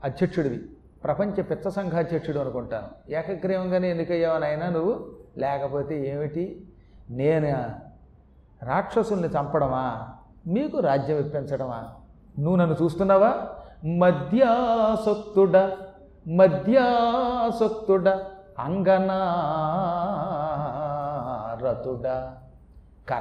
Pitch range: 160-230 Hz